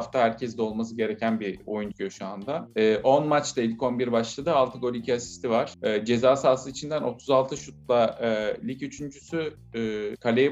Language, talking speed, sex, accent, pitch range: Turkish, 170 wpm, male, native, 115-145 Hz